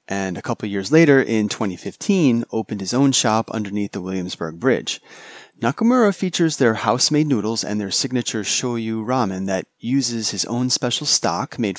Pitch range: 105-145 Hz